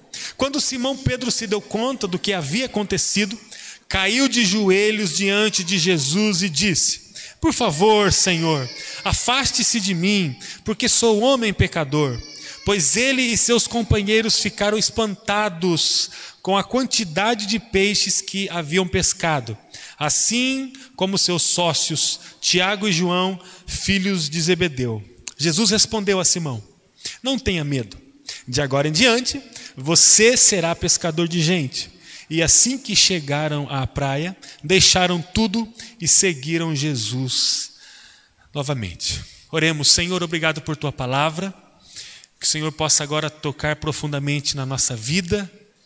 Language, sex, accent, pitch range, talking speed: Portuguese, male, Brazilian, 150-210 Hz, 125 wpm